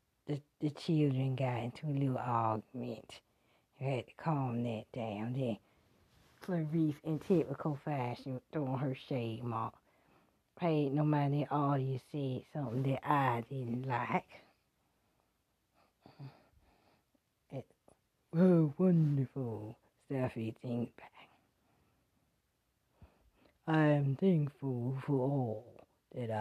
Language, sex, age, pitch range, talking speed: English, female, 40-59, 120-150 Hz, 110 wpm